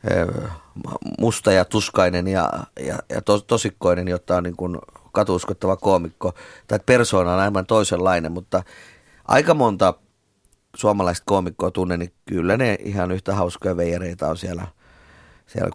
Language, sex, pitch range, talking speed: Finnish, male, 90-105 Hz, 135 wpm